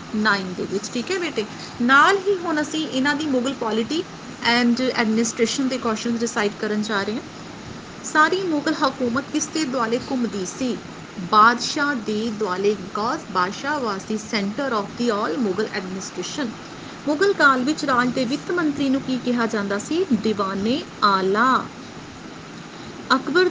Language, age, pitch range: Hindi, 30-49, 220-285 Hz